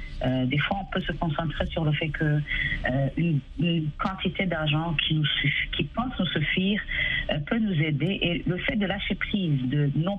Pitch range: 150-205 Hz